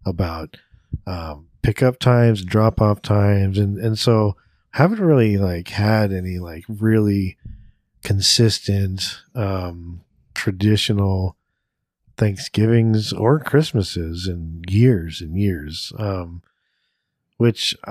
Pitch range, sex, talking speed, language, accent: 95-115 Hz, male, 100 wpm, English, American